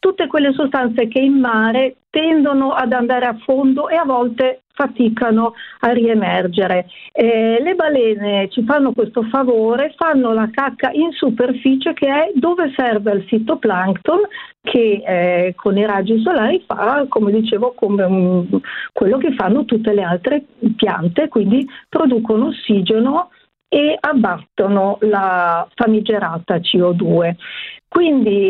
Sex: female